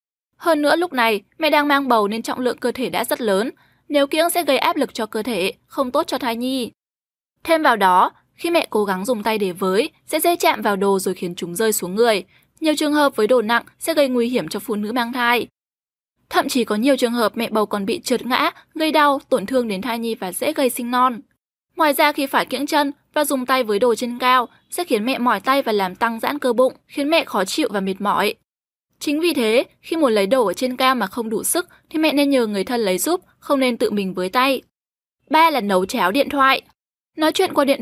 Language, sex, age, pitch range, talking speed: Vietnamese, female, 10-29, 220-295 Hz, 255 wpm